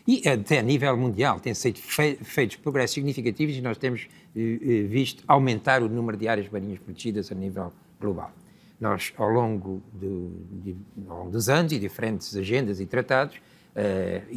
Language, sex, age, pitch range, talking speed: Portuguese, male, 60-79, 105-135 Hz, 165 wpm